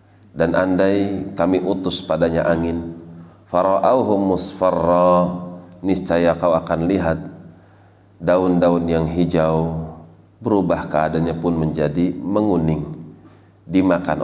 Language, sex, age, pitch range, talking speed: Indonesian, male, 40-59, 85-100 Hz, 90 wpm